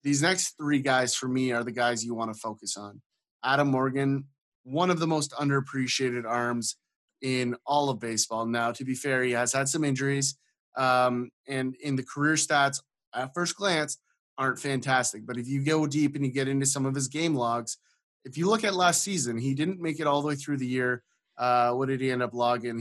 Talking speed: 220 wpm